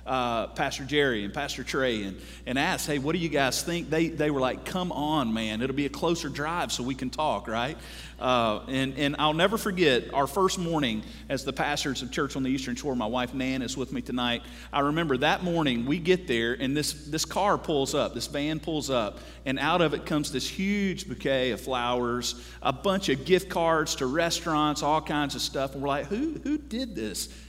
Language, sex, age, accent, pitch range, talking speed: English, male, 40-59, American, 125-160 Hz, 225 wpm